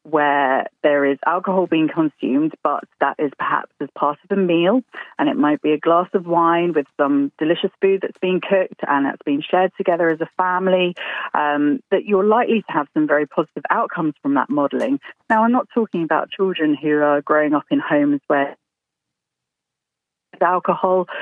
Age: 30-49